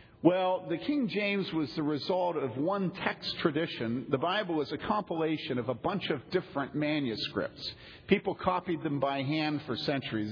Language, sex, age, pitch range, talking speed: English, male, 50-69, 135-175 Hz, 170 wpm